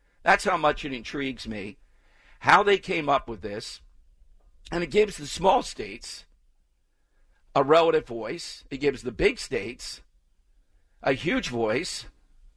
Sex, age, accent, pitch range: male, 50-69, American, 130-165 Hz